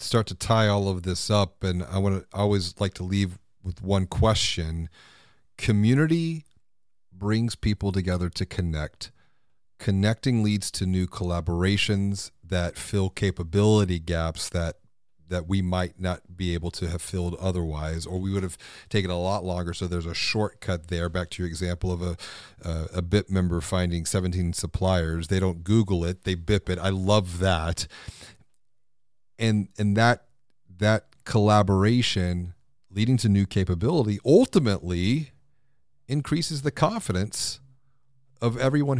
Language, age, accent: English, 40-59, American